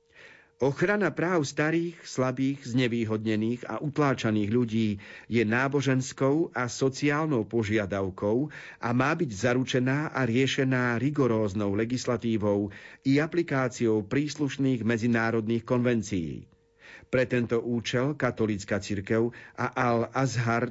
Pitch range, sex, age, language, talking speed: 115-140 Hz, male, 50-69, Slovak, 95 wpm